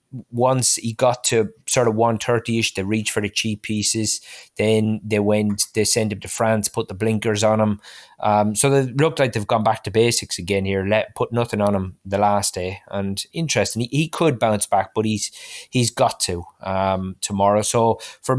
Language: English